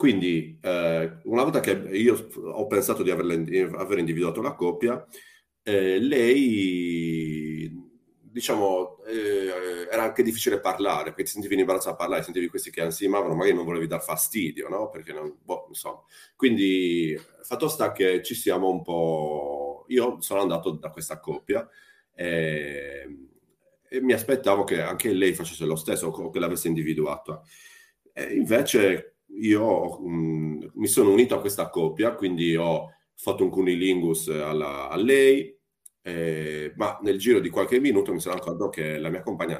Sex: male